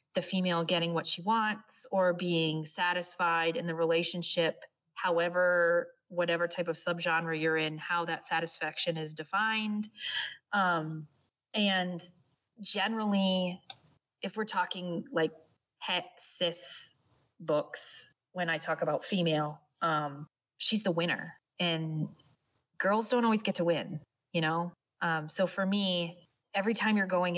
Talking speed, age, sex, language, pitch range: 130 wpm, 30-49, female, English, 160-195 Hz